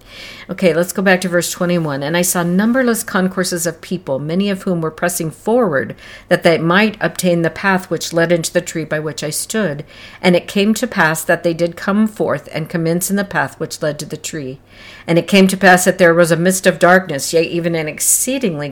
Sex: female